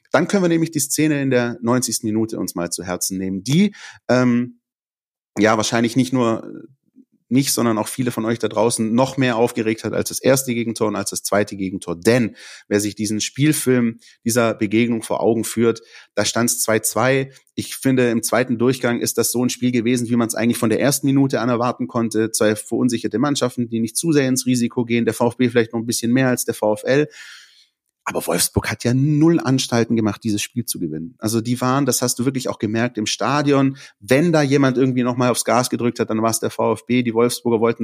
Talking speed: 215 wpm